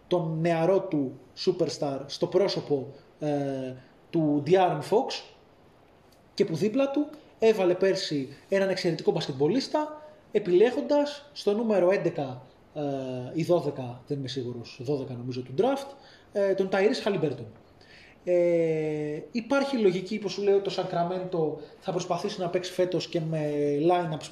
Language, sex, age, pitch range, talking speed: Greek, male, 20-39, 150-220 Hz, 135 wpm